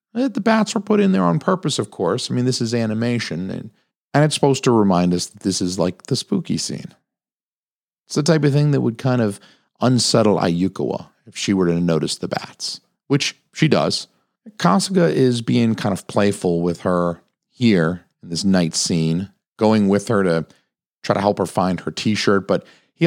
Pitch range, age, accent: 90-140 Hz, 40-59, American